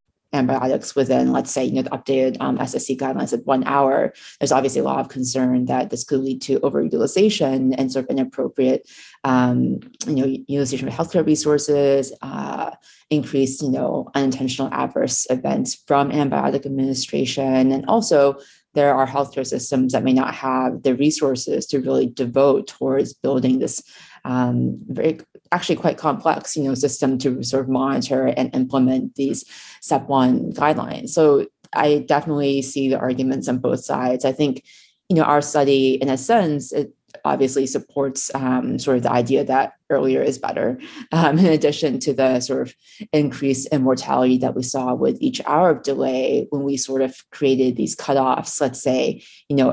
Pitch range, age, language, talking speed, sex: 130-145 Hz, 30-49, English, 170 wpm, female